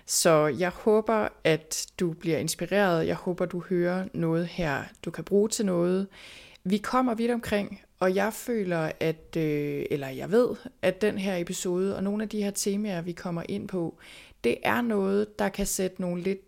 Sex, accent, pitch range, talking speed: female, native, 170-205 Hz, 185 wpm